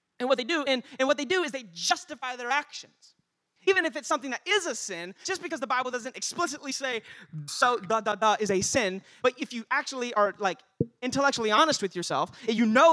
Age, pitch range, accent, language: 30-49, 230-310 Hz, American, English